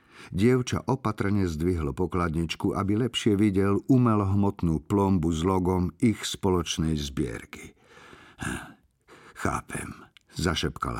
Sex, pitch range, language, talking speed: male, 85-110 Hz, Slovak, 85 wpm